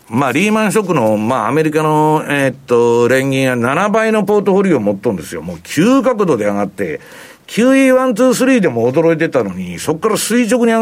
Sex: male